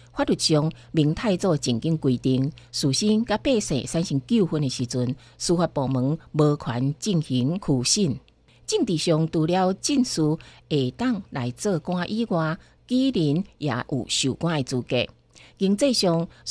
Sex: female